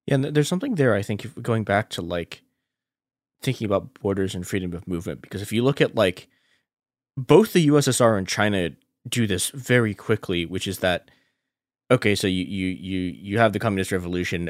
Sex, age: male, 20-39